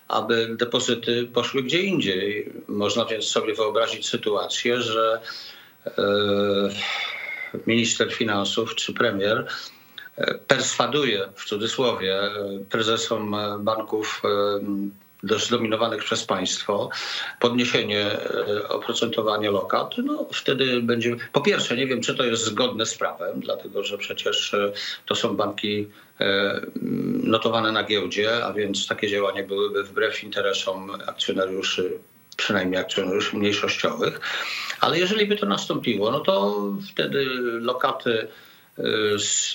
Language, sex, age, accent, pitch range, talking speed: English, male, 50-69, Polish, 105-125 Hz, 105 wpm